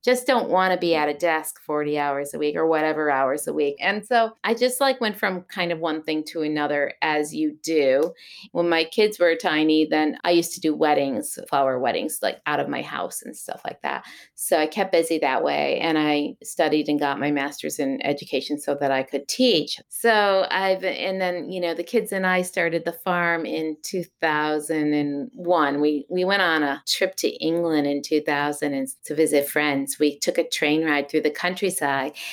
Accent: American